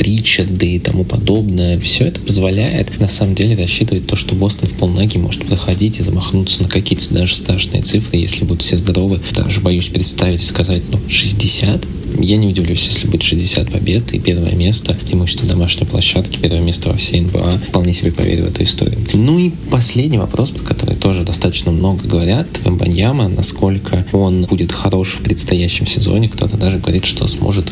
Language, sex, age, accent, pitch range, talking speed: Russian, male, 20-39, native, 90-105 Hz, 180 wpm